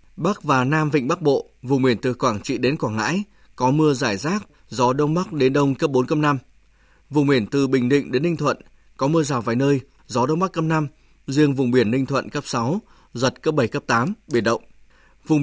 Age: 20-39